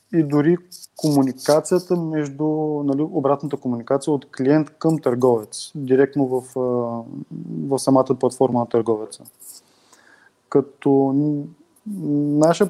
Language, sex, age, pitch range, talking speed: Bulgarian, male, 20-39, 125-155 Hz, 95 wpm